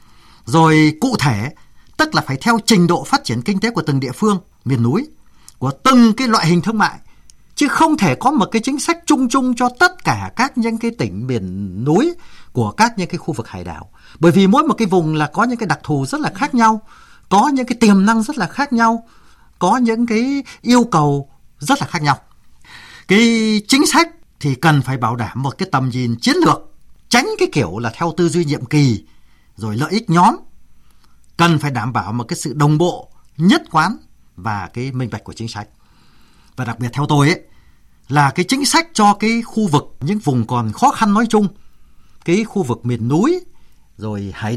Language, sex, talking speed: Vietnamese, male, 215 wpm